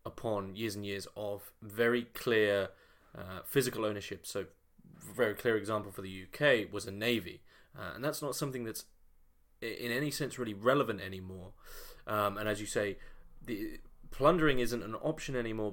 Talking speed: 165 wpm